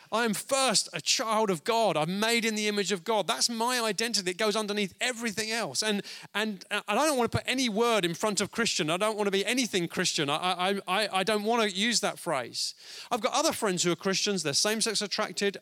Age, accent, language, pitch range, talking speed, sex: 30-49, British, English, 170-220 Hz, 240 wpm, male